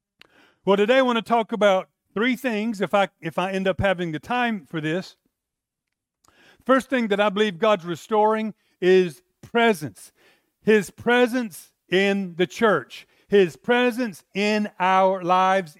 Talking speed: 150 wpm